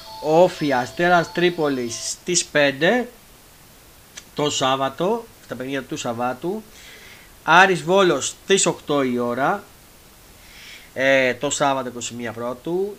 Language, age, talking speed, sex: Greek, 30-49, 100 wpm, male